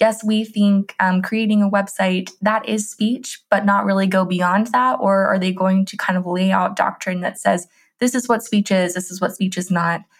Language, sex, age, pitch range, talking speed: English, female, 20-39, 185-215 Hz, 230 wpm